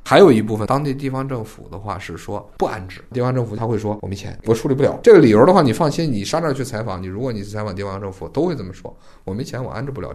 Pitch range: 100-135 Hz